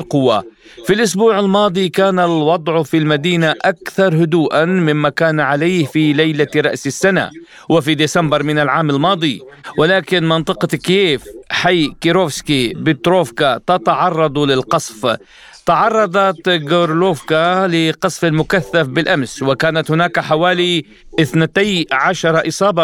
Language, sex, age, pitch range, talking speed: Arabic, male, 40-59, 155-190 Hz, 105 wpm